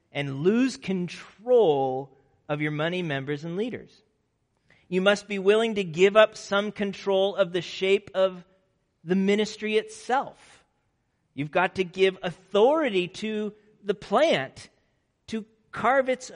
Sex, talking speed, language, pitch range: male, 130 wpm, English, 165-220 Hz